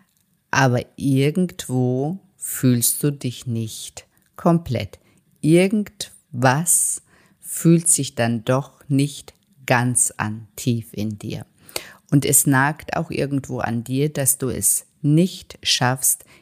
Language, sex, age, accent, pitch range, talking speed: German, female, 50-69, German, 125-145 Hz, 110 wpm